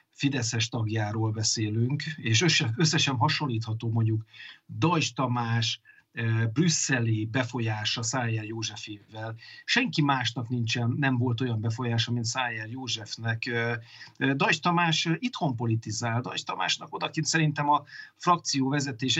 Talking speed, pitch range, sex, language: 105 wpm, 115-145 Hz, male, Hungarian